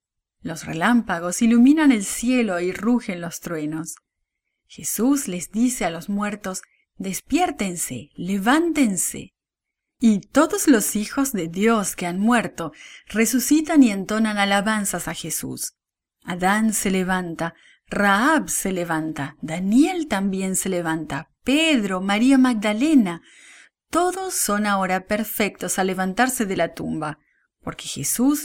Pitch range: 180-250 Hz